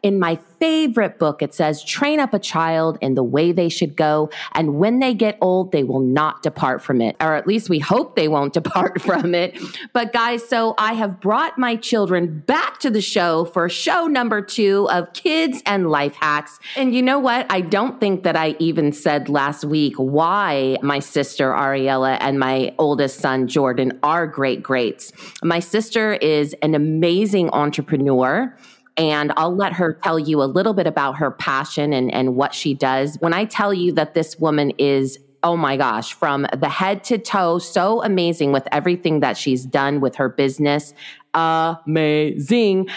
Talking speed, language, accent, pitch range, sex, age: 185 wpm, English, American, 145-200 Hz, female, 30-49